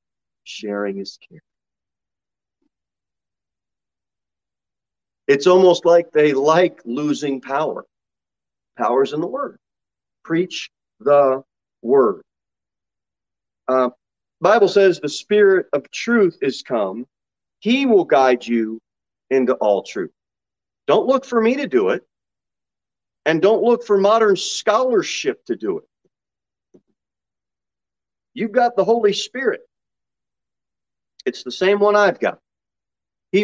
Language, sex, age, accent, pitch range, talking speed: English, male, 40-59, American, 135-205 Hz, 110 wpm